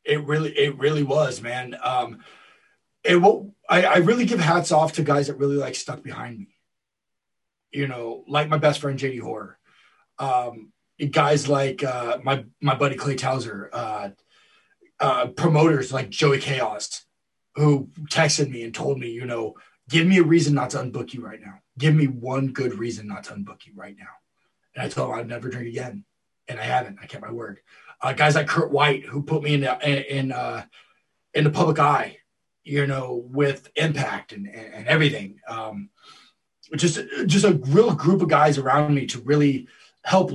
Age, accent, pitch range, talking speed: 20-39, American, 130-160 Hz, 185 wpm